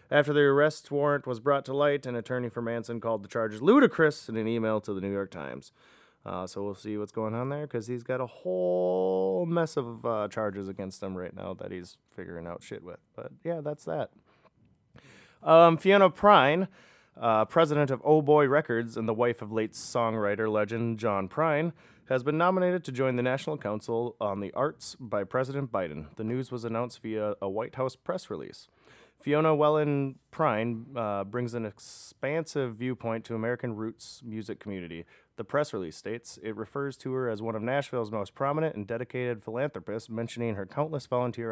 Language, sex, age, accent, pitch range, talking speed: English, male, 30-49, American, 105-140 Hz, 185 wpm